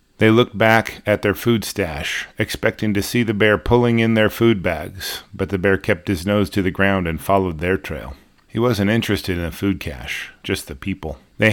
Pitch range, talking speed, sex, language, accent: 95-110 Hz, 215 wpm, male, English, American